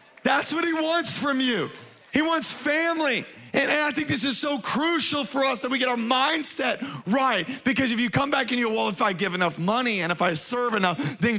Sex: male